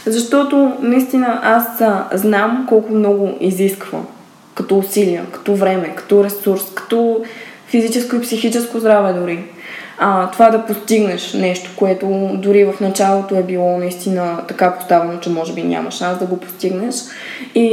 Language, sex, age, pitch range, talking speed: Bulgarian, female, 20-39, 185-230 Hz, 140 wpm